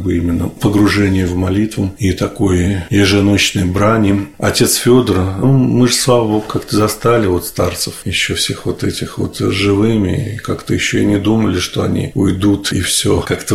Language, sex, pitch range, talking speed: Russian, male, 95-110 Hz, 165 wpm